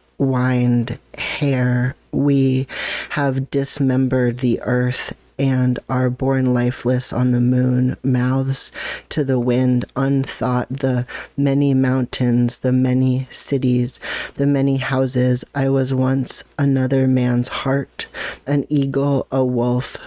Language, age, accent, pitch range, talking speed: English, 40-59, American, 125-135 Hz, 115 wpm